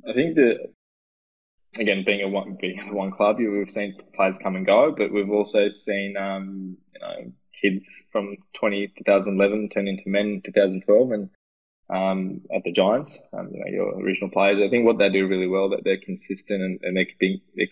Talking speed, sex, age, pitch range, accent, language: 195 wpm, male, 20-39, 95-100 Hz, Australian, English